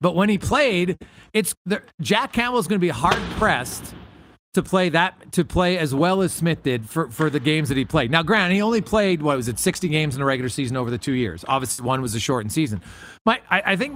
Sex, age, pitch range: male, 40-59, 160-205 Hz